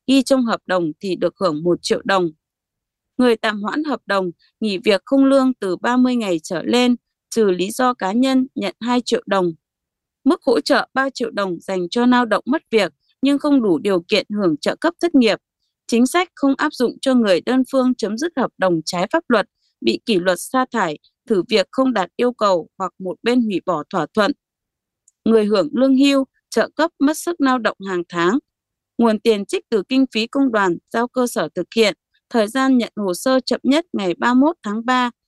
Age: 20-39